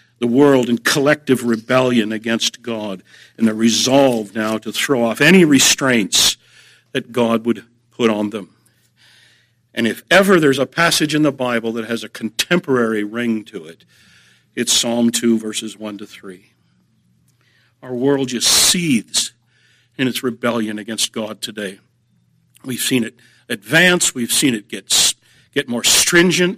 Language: English